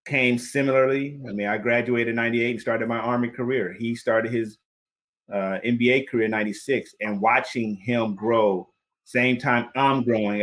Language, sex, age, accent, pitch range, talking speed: English, male, 30-49, American, 110-130 Hz, 165 wpm